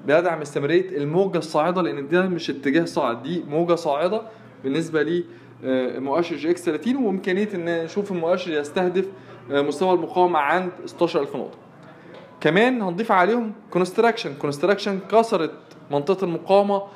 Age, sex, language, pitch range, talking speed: 20-39, male, Arabic, 155-195 Hz, 125 wpm